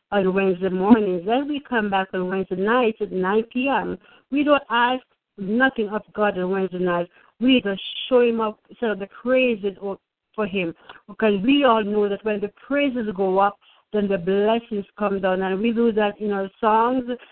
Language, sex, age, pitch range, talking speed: English, female, 60-79, 195-250 Hz, 190 wpm